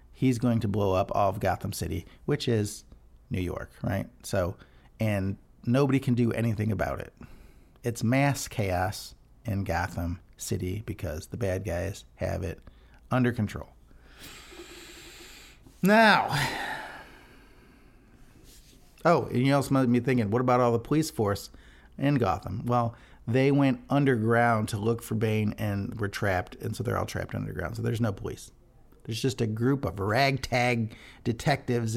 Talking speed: 150 wpm